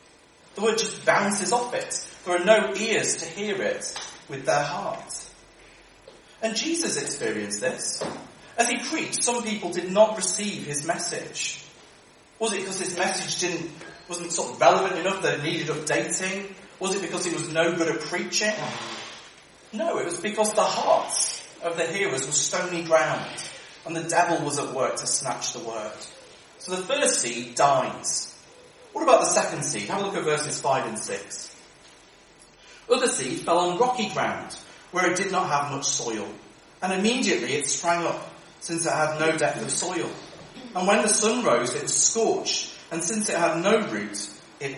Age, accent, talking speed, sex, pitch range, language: 30-49, British, 180 wpm, male, 165-215 Hz, English